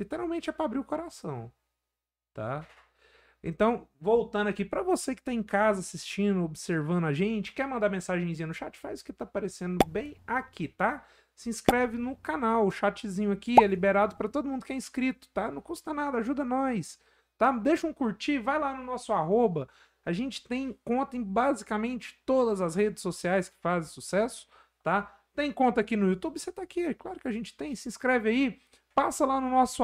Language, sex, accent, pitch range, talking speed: Portuguese, male, Brazilian, 185-255 Hz, 195 wpm